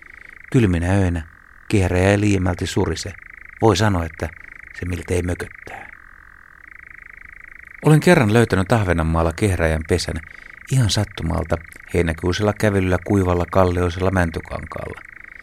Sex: male